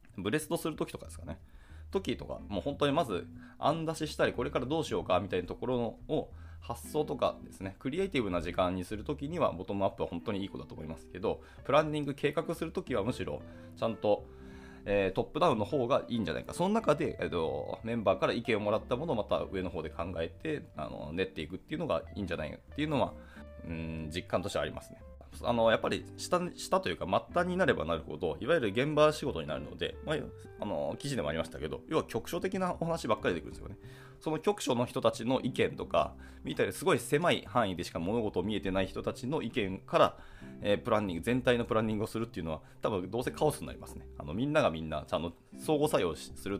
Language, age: Japanese, 20-39